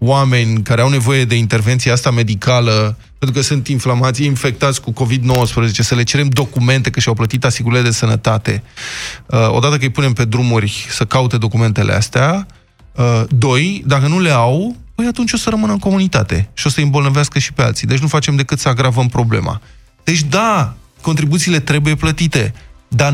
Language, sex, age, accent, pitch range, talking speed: Romanian, male, 20-39, native, 120-145 Hz, 180 wpm